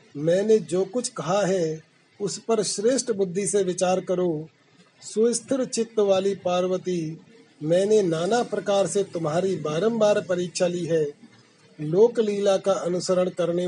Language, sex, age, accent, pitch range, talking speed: Hindi, male, 40-59, native, 165-200 Hz, 130 wpm